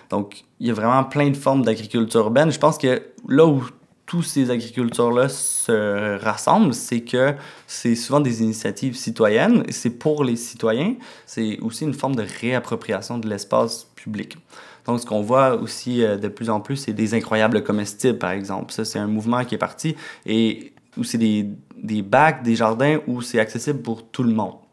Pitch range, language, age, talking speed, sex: 110-145 Hz, French, 20-39, 185 wpm, male